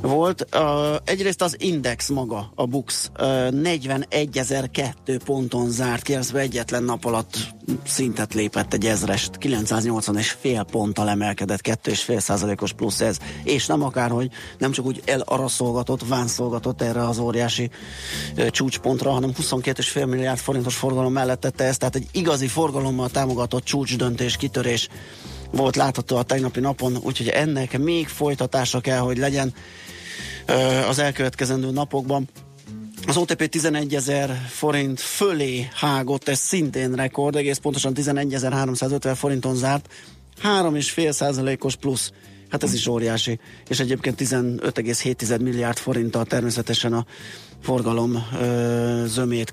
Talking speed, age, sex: 130 wpm, 30-49, male